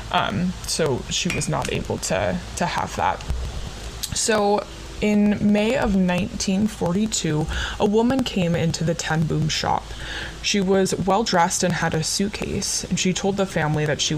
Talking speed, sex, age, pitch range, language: 155 wpm, female, 20-39, 155-195 Hz, English